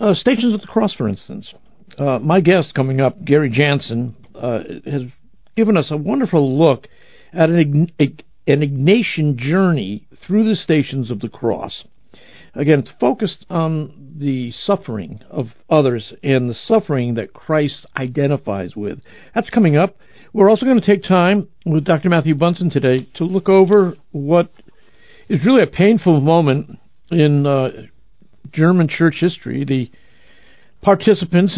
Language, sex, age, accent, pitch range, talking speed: English, male, 60-79, American, 130-185 Hz, 145 wpm